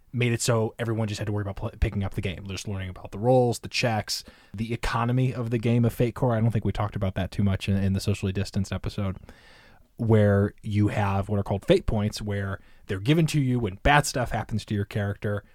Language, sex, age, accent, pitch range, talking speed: English, male, 20-39, American, 100-120 Hz, 250 wpm